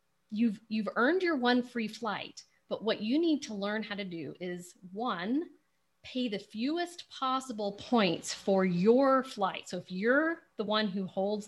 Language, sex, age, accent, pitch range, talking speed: English, female, 40-59, American, 185-245 Hz, 170 wpm